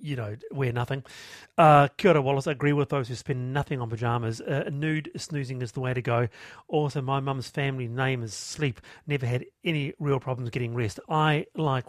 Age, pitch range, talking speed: 40-59, 130-170 Hz, 200 wpm